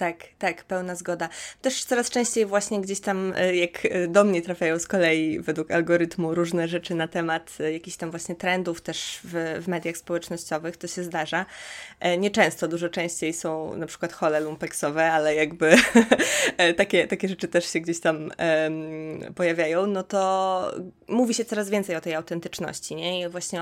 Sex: female